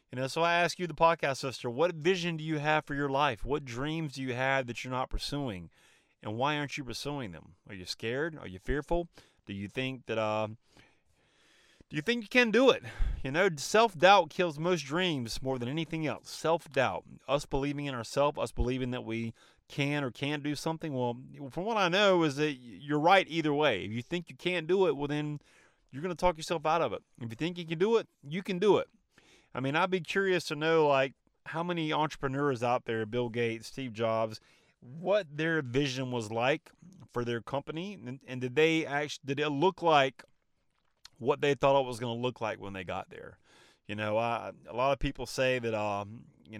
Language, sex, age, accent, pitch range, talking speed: English, male, 30-49, American, 125-170 Hz, 220 wpm